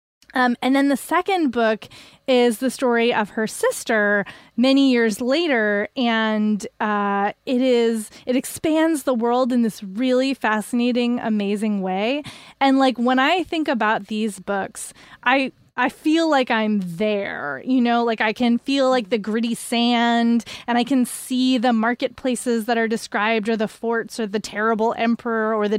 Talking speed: 165 wpm